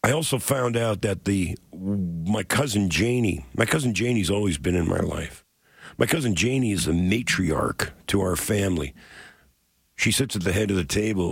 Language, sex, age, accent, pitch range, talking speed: English, male, 50-69, American, 85-110 Hz, 180 wpm